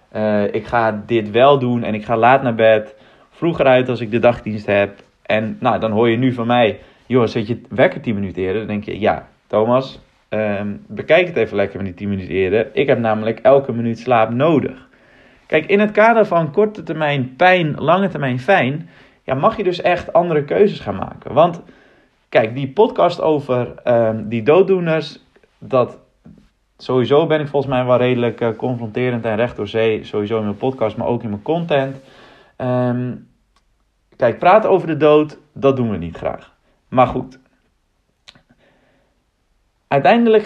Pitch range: 115-155 Hz